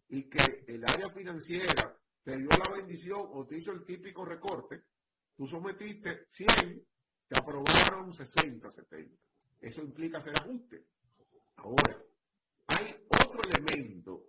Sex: male